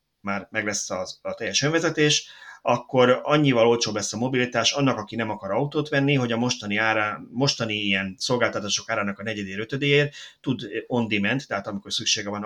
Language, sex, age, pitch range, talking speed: Hungarian, male, 30-49, 105-135 Hz, 175 wpm